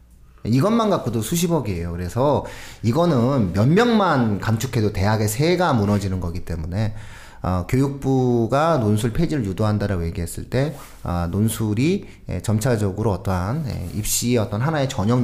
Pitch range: 105-155 Hz